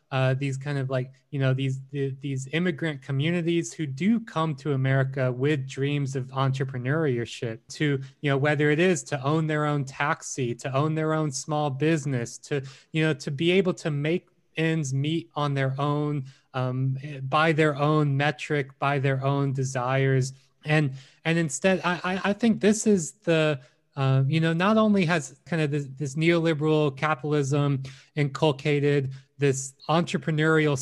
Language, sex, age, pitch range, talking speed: English, male, 20-39, 135-160 Hz, 160 wpm